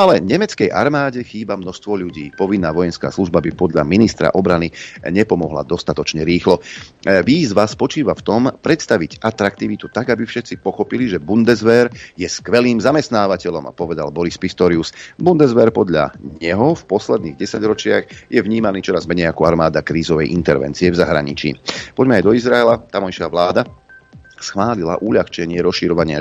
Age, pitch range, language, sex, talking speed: 40-59, 85-105 Hz, Slovak, male, 135 wpm